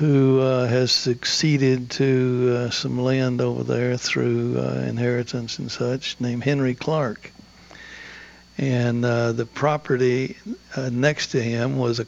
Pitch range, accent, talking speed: 115-130 Hz, American, 140 wpm